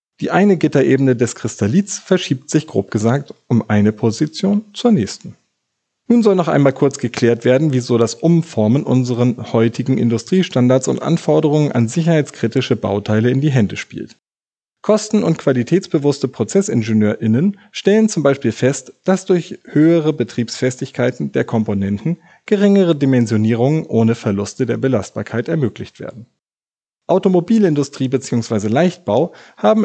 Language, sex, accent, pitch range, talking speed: German, male, German, 115-165 Hz, 125 wpm